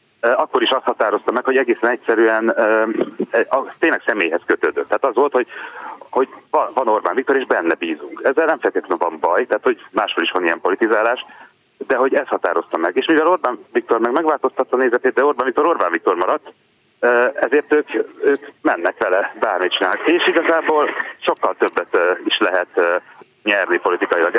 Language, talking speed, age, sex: Hungarian, 165 wpm, 30-49, male